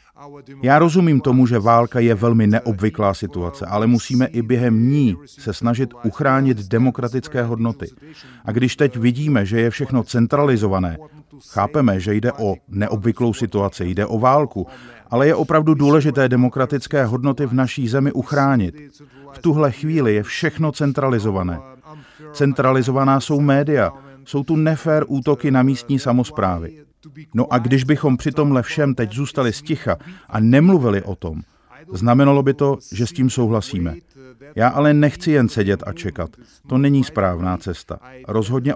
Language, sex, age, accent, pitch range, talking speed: Czech, male, 40-59, native, 115-140 Hz, 145 wpm